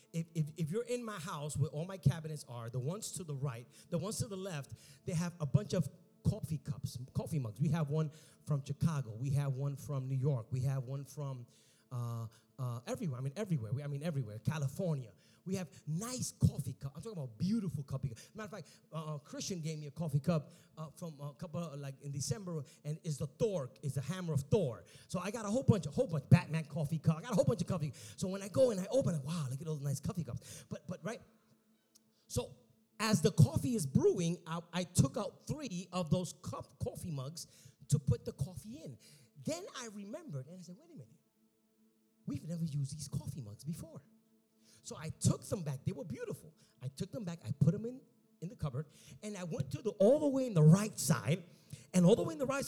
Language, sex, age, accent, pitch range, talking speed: English, male, 30-49, American, 140-175 Hz, 235 wpm